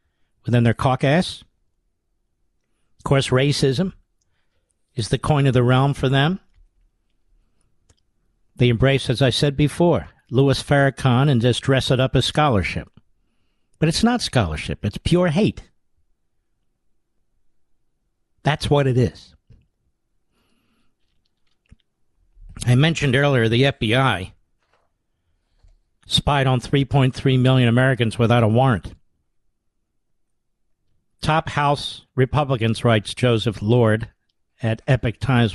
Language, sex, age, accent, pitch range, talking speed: English, male, 50-69, American, 110-145 Hz, 110 wpm